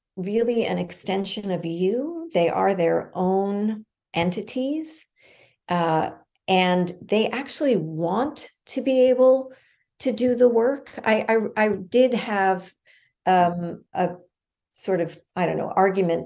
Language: English